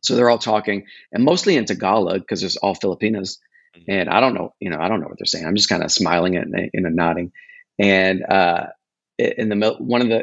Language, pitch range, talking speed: English, 100-120 Hz, 230 wpm